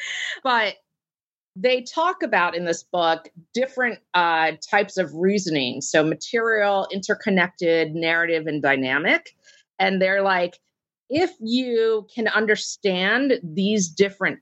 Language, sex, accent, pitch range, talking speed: English, female, American, 170-215 Hz, 110 wpm